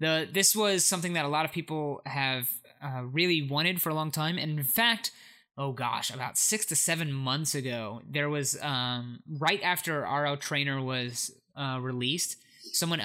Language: English